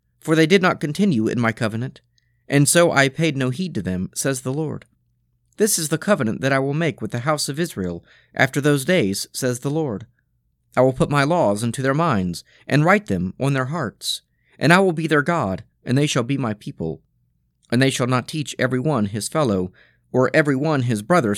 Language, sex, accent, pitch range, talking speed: English, male, American, 95-155 Hz, 220 wpm